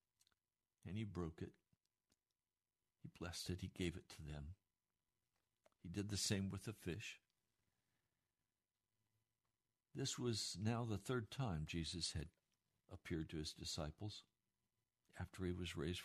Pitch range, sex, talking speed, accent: 90-110 Hz, male, 130 wpm, American